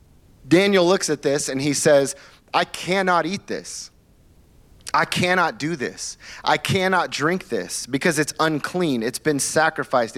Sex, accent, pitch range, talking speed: male, American, 125-165 Hz, 145 wpm